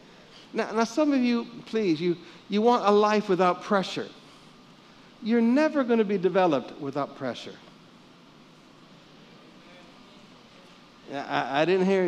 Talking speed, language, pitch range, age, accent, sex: 125 wpm, English, 200-260 Hz, 60-79, American, male